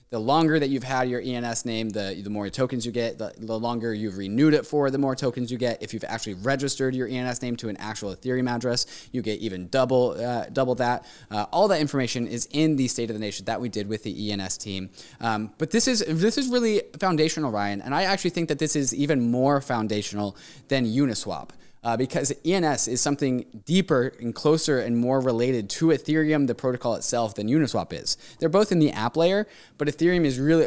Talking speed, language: 220 wpm, English